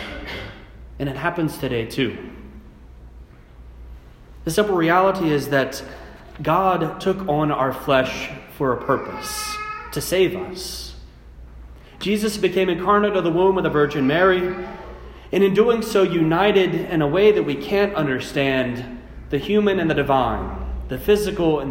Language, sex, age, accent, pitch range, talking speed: English, male, 30-49, American, 125-180 Hz, 140 wpm